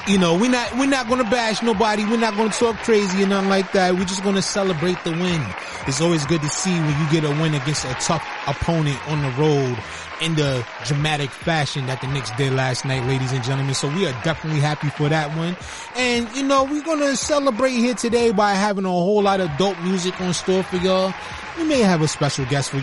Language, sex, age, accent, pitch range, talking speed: English, male, 20-39, American, 145-195 Hz, 235 wpm